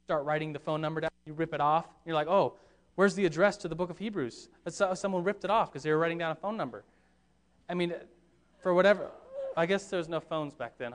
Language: English